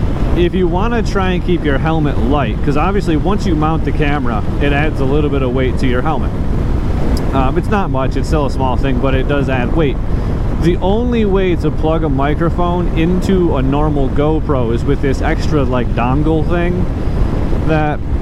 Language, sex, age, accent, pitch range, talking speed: English, male, 30-49, American, 125-155 Hz, 200 wpm